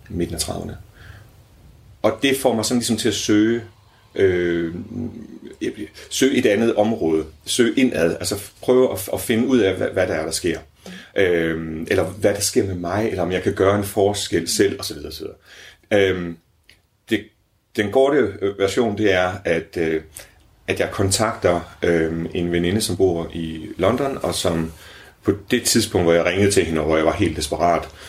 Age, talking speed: 30-49, 175 wpm